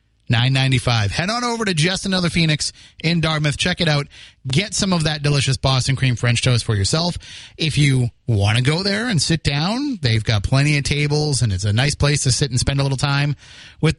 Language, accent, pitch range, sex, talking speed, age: English, American, 125-160 Hz, male, 220 wpm, 30-49